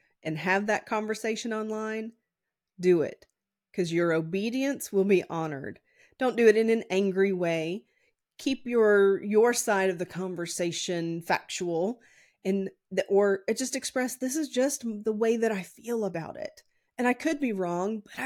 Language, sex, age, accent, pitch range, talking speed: English, female, 30-49, American, 185-245 Hz, 160 wpm